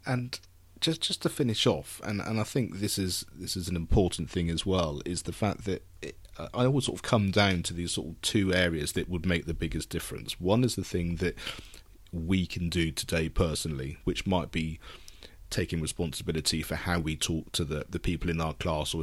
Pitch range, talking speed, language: 85-100 Hz, 215 wpm, English